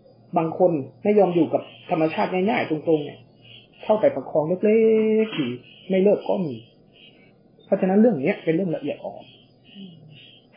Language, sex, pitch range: Thai, male, 150-195 Hz